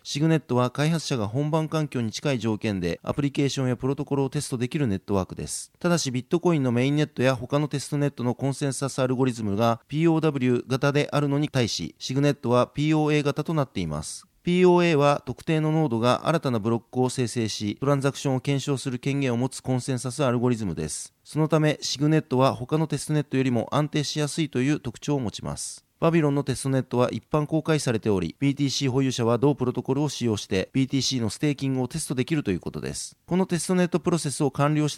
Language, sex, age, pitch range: Japanese, male, 40-59, 120-150 Hz